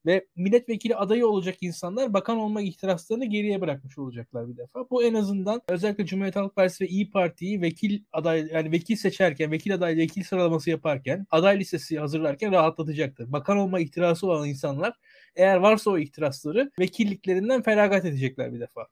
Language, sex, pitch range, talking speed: Turkish, male, 165-210 Hz, 160 wpm